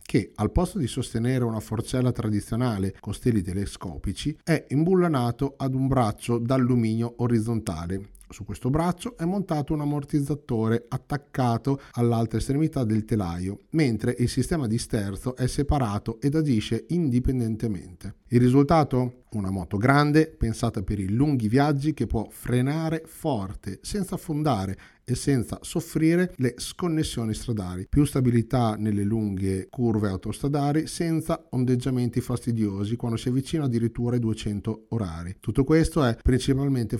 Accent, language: native, Italian